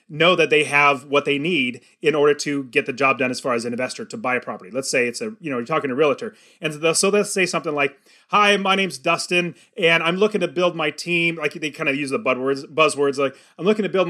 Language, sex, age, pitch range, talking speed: English, male, 30-49, 145-190 Hz, 275 wpm